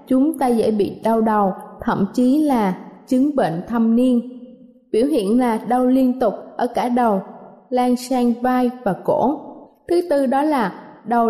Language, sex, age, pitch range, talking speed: Vietnamese, female, 20-39, 225-280 Hz, 170 wpm